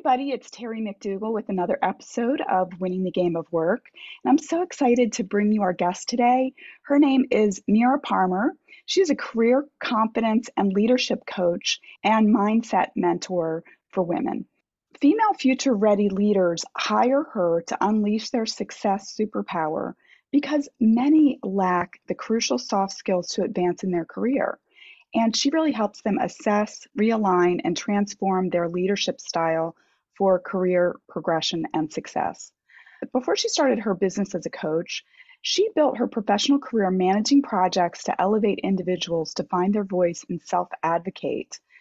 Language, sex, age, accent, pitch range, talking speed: English, female, 30-49, American, 180-250 Hz, 150 wpm